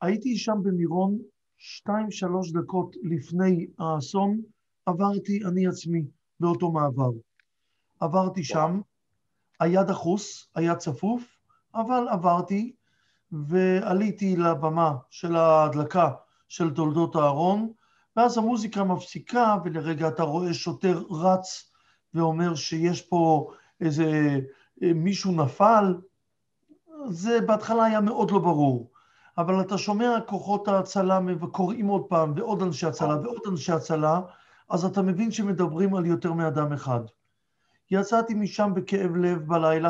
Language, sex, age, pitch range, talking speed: Hebrew, male, 50-69, 165-200 Hz, 110 wpm